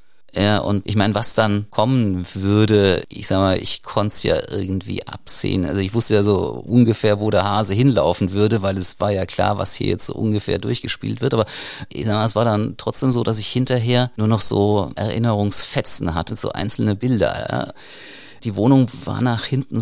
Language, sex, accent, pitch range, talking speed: German, male, German, 100-125 Hz, 200 wpm